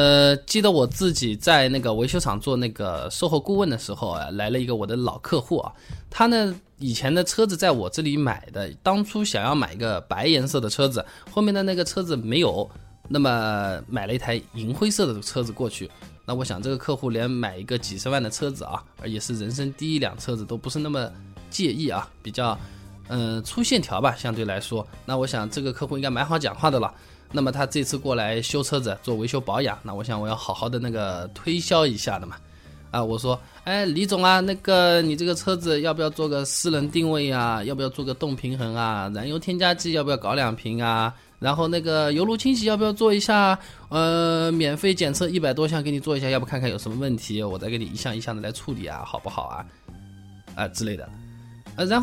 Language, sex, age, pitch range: Chinese, male, 20-39, 110-160 Hz